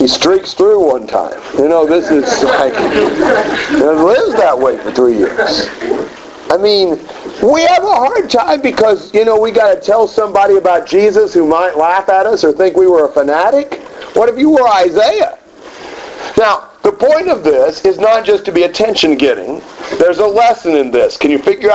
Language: English